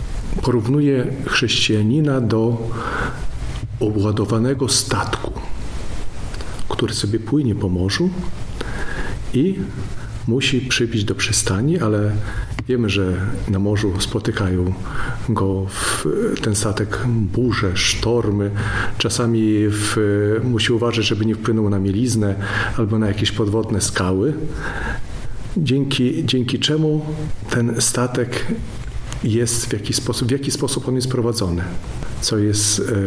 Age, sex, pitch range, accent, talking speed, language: 40-59, male, 105-125 Hz, native, 105 wpm, Polish